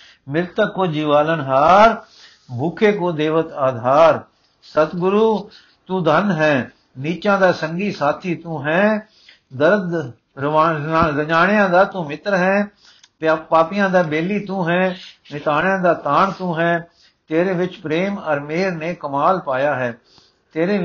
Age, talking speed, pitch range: 60-79, 135 wpm, 150-195 Hz